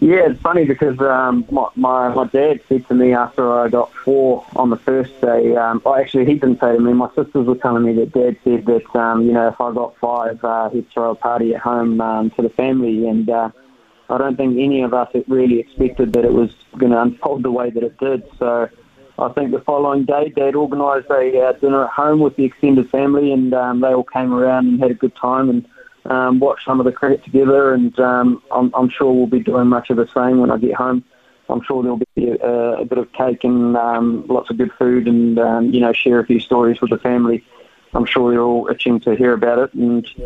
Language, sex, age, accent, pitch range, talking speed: English, male, 20-39, Australian, 115-130 Hz, 245 wpm